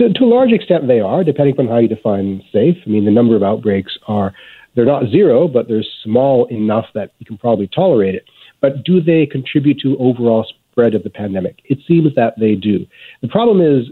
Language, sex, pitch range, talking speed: English, male, 105-130 Hz, 215 wpm